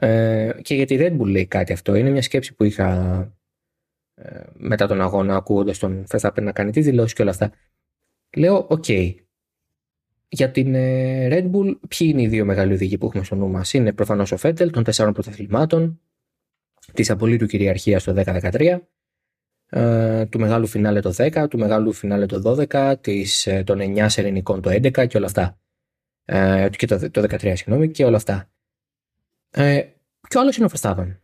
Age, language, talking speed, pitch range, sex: 20-39, Greek, 165 wpm, 95-130 Hz, male